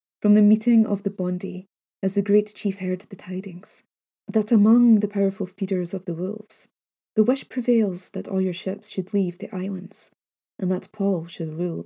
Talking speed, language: 185 wpm, English